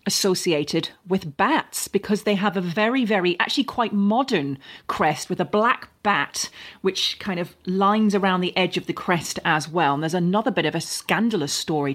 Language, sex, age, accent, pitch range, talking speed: English, female, 30-49, British, 165-210 Hz, 185 wpm